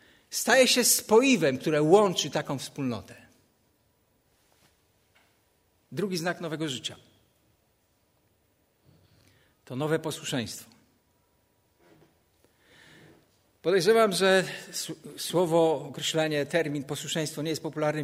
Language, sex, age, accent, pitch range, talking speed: Polish, male, 50-69, native, 140-180 Hz, 75 wpm